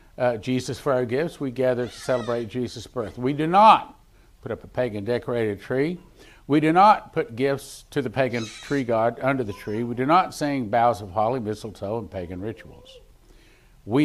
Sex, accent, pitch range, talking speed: male, American, 120-160 Hz, 190 wpm